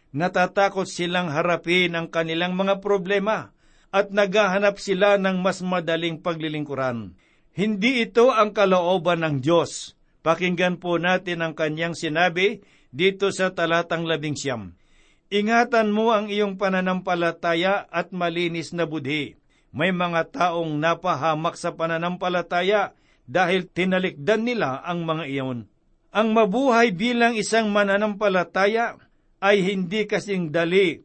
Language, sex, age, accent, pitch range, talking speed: Filipino, male, 50-69, native, 165-200 Hz, 115 wpm